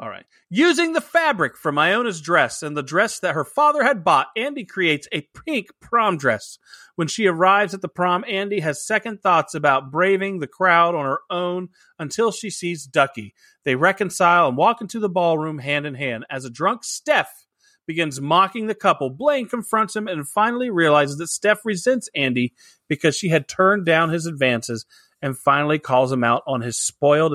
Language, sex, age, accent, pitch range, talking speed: English, male, 30-49, American, 135-190 Hz, 185 wpm